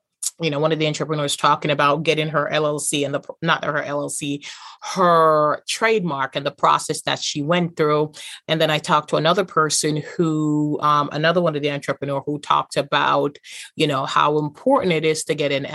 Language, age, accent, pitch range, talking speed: English, 30-49, American, 145-175 Hz, 195 wpm